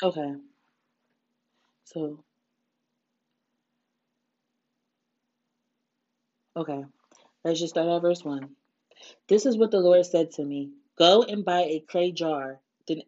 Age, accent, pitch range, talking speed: 20-39, American, 150-205 Hz, 110 wpm